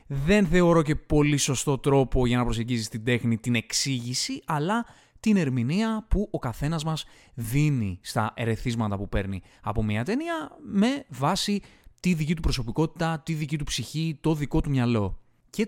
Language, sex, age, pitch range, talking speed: Greek, male, 20-39, 115-150 Hz, 165 wpm